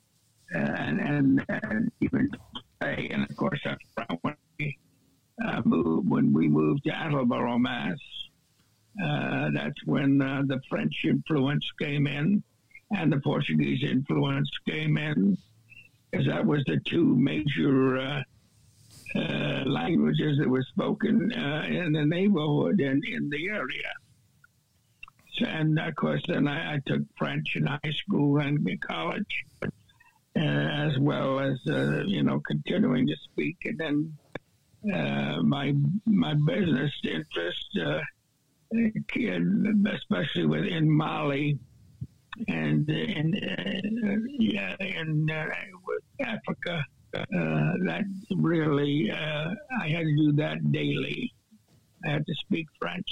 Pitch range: 120-185 Hz